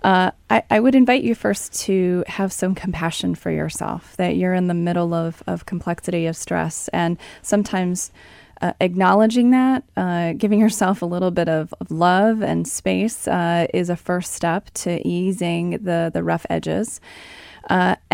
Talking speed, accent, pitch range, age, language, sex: 170 wpm, American, 165-205 Hz, 20-39, English, female